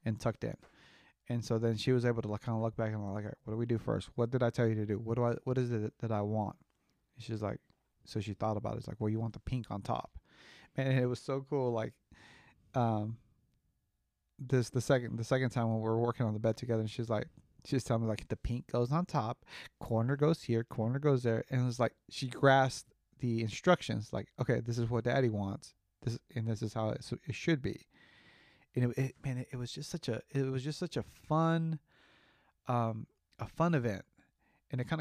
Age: 30-49